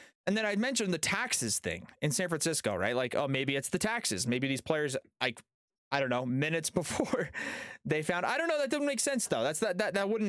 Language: English